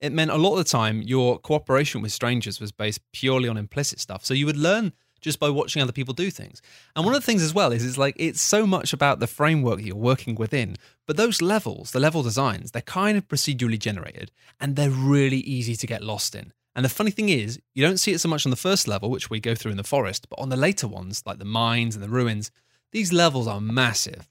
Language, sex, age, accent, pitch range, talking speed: English, male, 20-39, British, 115-160 Hz, 255 wpm